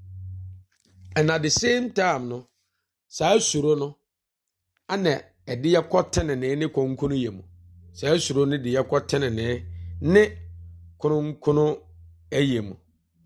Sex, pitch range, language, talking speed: male, 100-155 Hz, English, 120 wpm